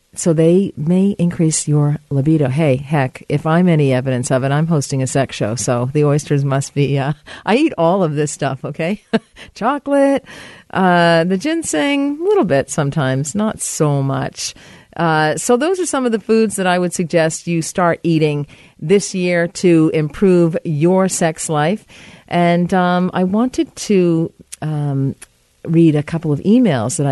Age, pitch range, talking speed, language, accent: 50-69, 150-210 Hz, 175 wpm, English, American